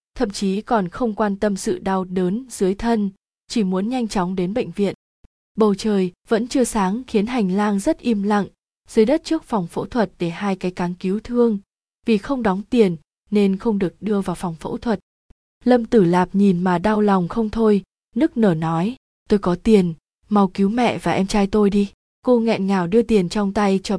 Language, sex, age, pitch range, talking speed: Vietnamese, female, 20-39, 185-225 Hz, 210 wpm